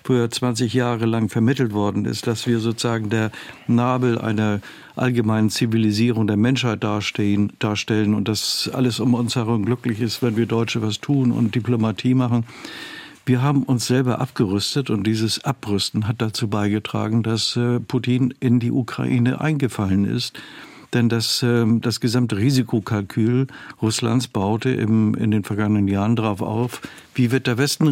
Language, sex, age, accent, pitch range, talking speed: German, male, 50-69, German, 110-125 Hz, 150 wpm